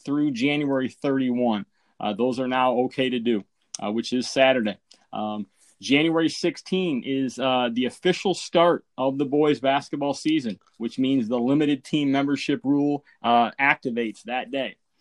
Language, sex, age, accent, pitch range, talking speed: English, male, 30-49, American, 120-160 Hz, 150 wpm